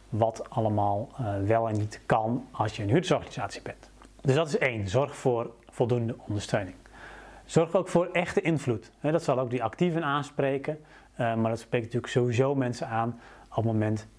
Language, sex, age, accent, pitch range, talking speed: Dutch, male, 30-49, Dutch, 115-140 Hz, 170 wpm